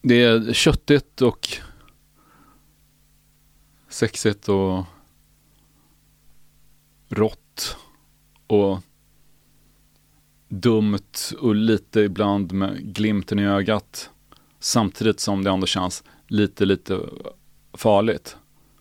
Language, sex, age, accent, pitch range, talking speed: Swedish, male, 30-49, Norwegian, 100-120 Hz, 75 wpm